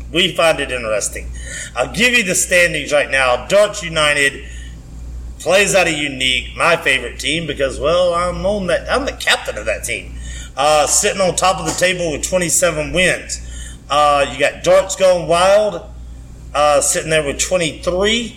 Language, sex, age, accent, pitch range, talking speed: English, male, 40-59, American, 135-185 Hz, 170 wpm